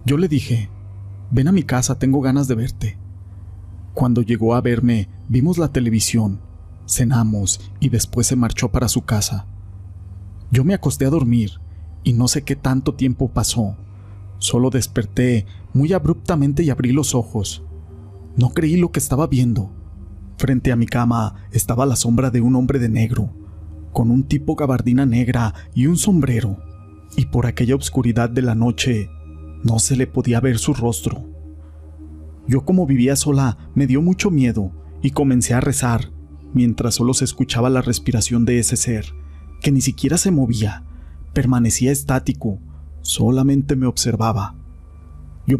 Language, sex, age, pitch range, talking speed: Spanish, male, 40-59, 100-130 Hz, 155 wpm